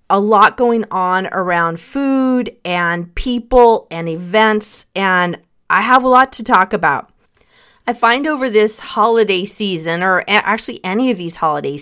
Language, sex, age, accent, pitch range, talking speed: English, female, 40-59, American, 185-245 Hz, 150 wpm